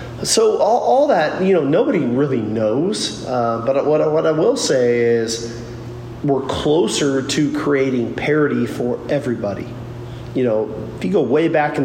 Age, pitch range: 40-59, 115-135 Hz